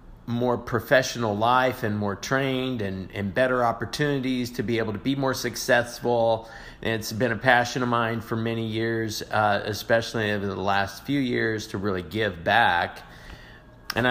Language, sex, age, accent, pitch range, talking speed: English, male, 40-59, American, 100-125 Hz, 160 wpm